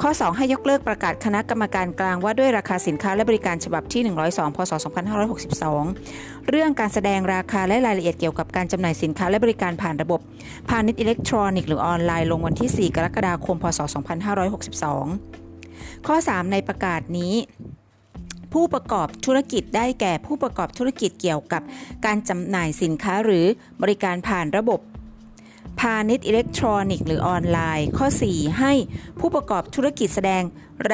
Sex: female